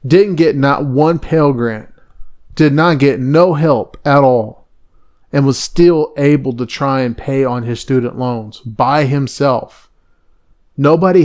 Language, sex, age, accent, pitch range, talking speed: English, male, 30-49, American, 120-150 Hz, 150 wpm